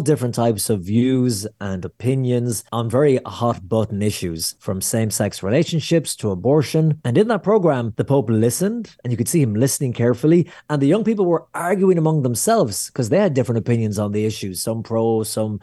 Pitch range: 115-150 Hz